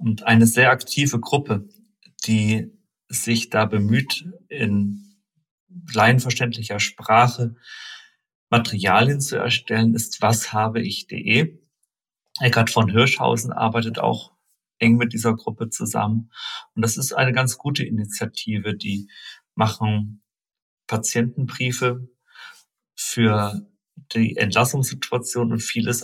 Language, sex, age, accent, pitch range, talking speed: German, male, 40-59, German, 115-140 Hz, 95 wpm